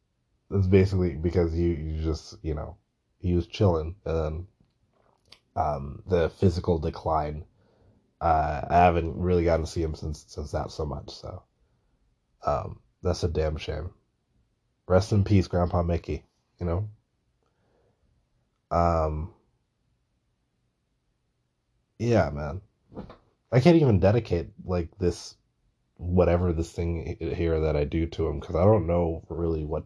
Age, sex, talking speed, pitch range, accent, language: 20-39, male, 135 wpm, 80-100 Hz, American, English